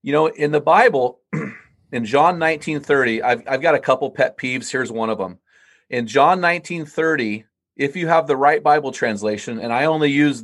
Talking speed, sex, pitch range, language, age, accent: 190 wpm, male, 125-160 Hz, English, 30-49, American